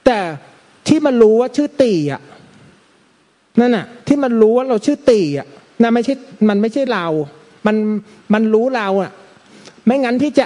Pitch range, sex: 195-260 Hz, male